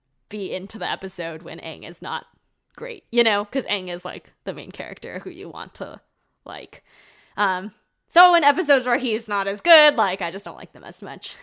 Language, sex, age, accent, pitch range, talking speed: English, female, 20-39, American, 185-230 Hz, 210 wpm